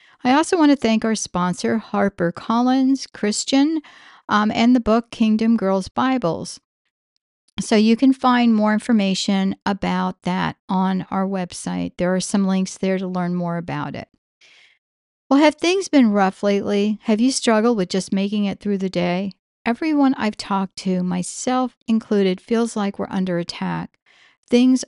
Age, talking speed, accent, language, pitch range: 50-69, 155 wpm, American, English, 185-235 Hz